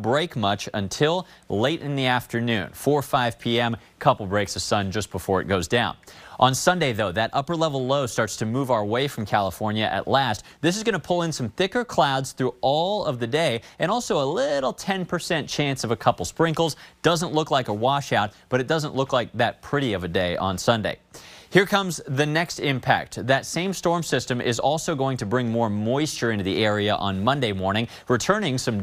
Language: English